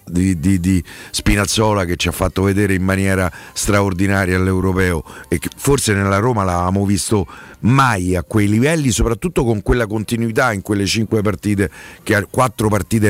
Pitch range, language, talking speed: 95-120 Hz, Italian, 165 wpm